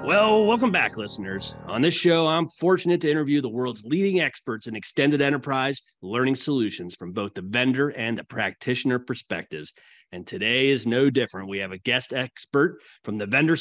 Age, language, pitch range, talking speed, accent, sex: 30-49, English, 110-140 Hz, 180 wpm, American, male